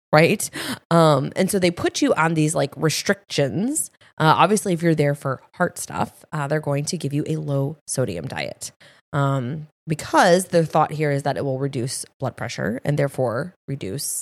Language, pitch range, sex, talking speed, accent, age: English, 140-180 Hz, female, 185 wpm, American, 20-39